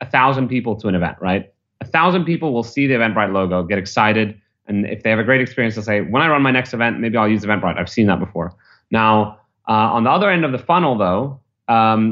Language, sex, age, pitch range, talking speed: English, male, 30-49, 100-130 Hz, 255 wpm